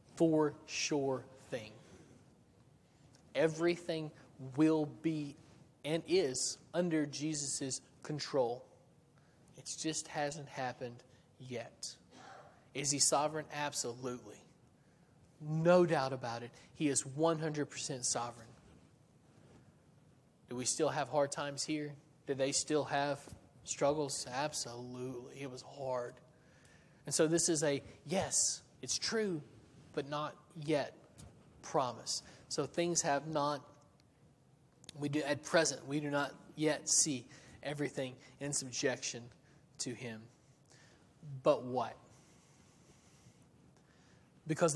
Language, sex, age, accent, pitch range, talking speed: English, male, 30-49, American, 130-155 Hz, 105 wpm